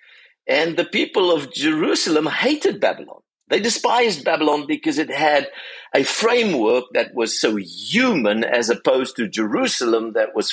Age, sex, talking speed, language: 50-69, male, 140 wpm, English